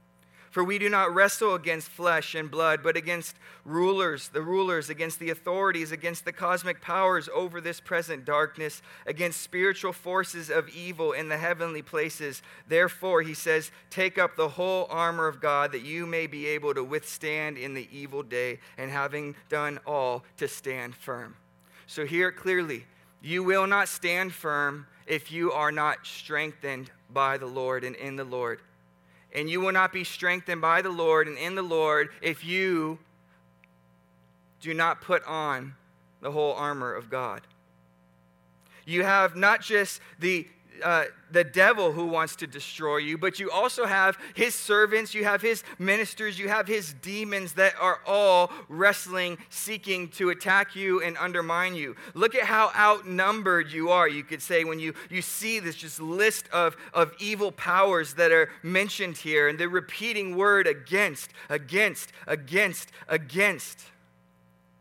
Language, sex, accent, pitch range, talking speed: English, male, American, 145-185 Hz, 165 wpm